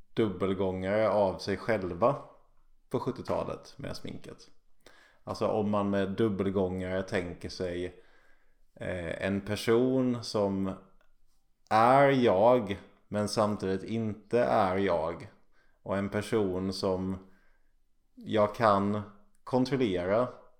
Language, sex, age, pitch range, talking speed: English, male, 30-49, 95-125 Hz, 95 wpm